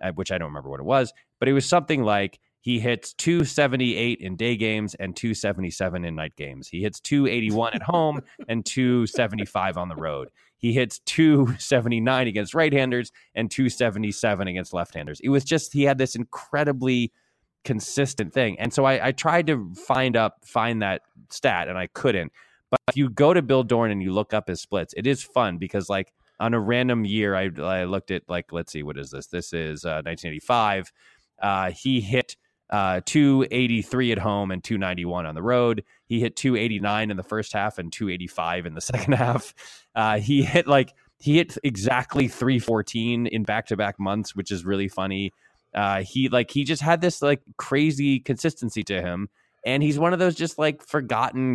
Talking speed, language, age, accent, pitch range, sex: 190 wpm, English, 20-39, American, 100-130 Hz, male